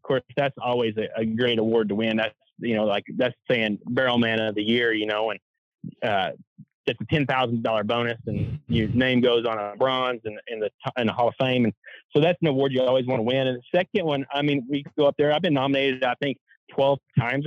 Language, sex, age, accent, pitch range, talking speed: English, male, 30-49, American, 120-140 Hz, 255 wpm